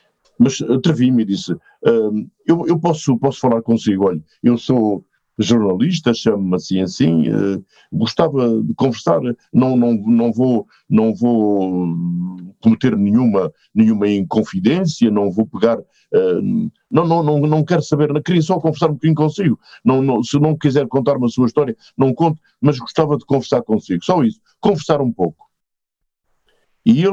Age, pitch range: 50-69, 105-155 Hz